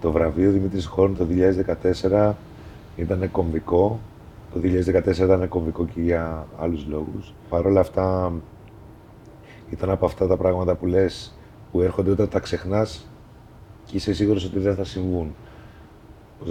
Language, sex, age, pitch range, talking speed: Greek, male, 30-49, 85-95 Hz, 140 wpm